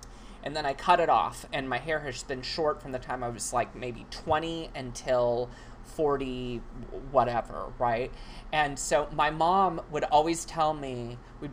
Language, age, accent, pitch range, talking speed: English, 30-49, American, 130-175 Hz, 165 wpm